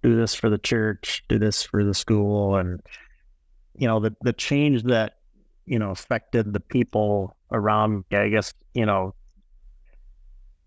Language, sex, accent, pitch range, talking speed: English, male, American, 90-110 Hz, 150 wpm